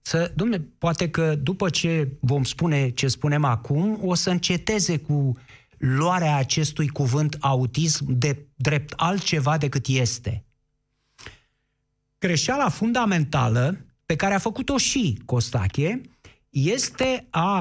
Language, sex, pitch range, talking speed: Romanian, male, 130-170 Hz, 110 wpm